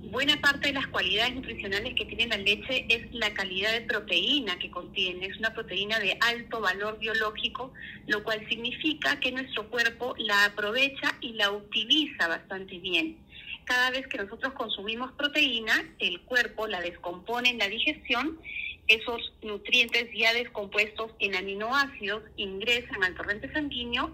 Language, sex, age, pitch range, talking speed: Spanish, female, 30-49, 205-265 Hz, 150 wpm